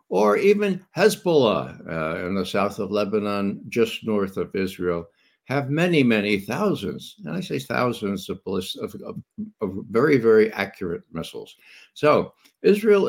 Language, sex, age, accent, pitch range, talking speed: English, male, 60-79, American, 100-145 Hz, 140 wpm